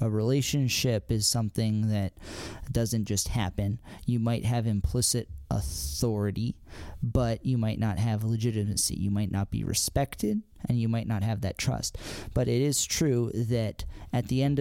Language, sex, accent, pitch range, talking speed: English, male, American, 100-115 Hz, 160 wpm